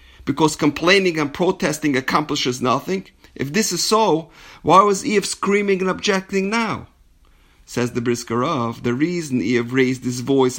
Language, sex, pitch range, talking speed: English, male, 125-190 Hz, 145 wpm